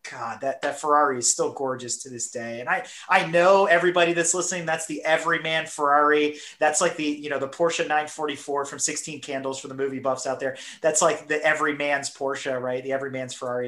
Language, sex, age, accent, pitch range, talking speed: English, male, 30-49, American, 135-170 Hz, 205 wpm